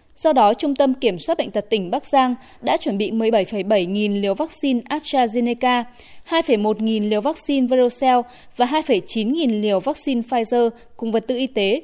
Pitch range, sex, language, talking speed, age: 215-275 Hz, female, Vietnamese, 175 wpm, 20-39